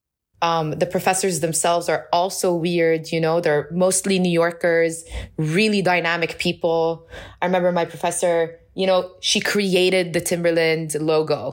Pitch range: 160-185 Hz